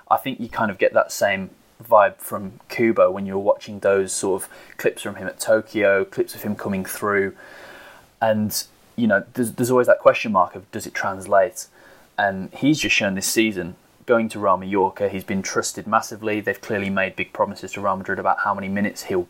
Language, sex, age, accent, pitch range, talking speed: English, male, 20-39, British, 95-115 Hz, 210 wpm